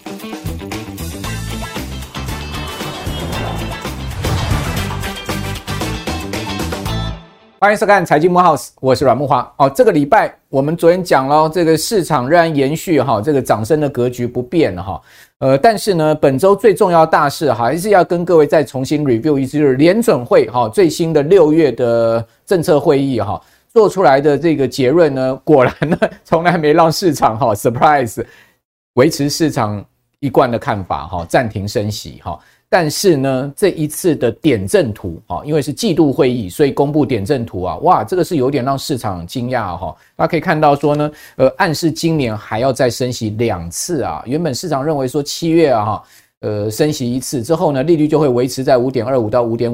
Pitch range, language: 110-160 Hz, Chinese